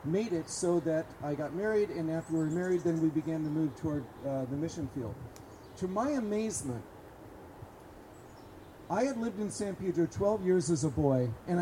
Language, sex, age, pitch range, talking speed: English, male, 50-69, 150-205 Hz, 190 wpm